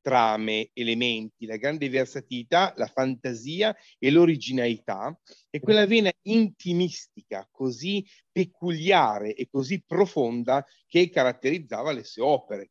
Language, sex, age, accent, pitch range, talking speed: Italian, male, 40-59, native, 120-170 Hz, 110 wpm